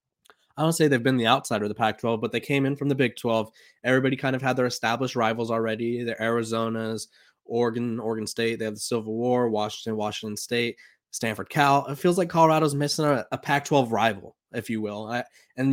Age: 20-39